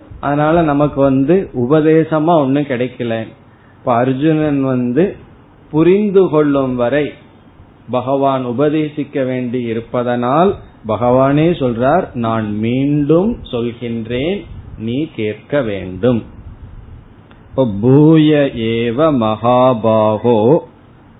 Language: Tamil